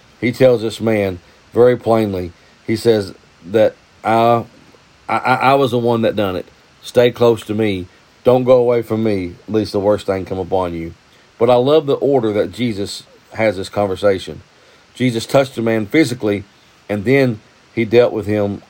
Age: 50-69